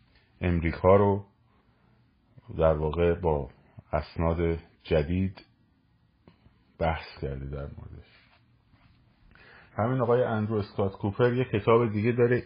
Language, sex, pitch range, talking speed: Persian, male, 80-110 Hz, 95 wpm